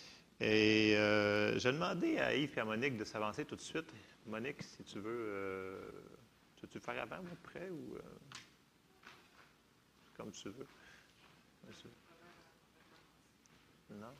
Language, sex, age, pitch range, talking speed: French, male, 40-59, 110-160 Hz, 125 wpm